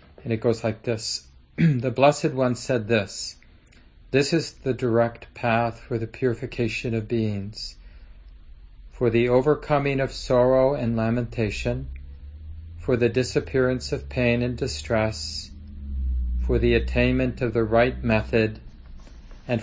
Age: 40-59